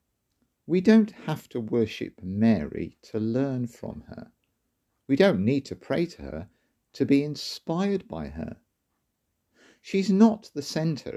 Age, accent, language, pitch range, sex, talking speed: 50-69, British, English, 105-155 Hz, male, 140 wpm